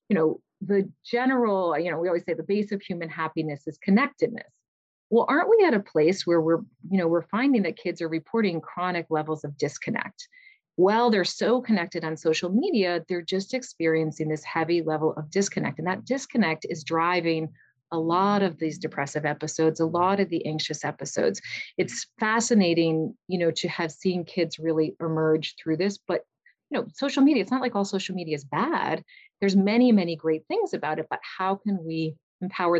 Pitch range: 160-195 Hz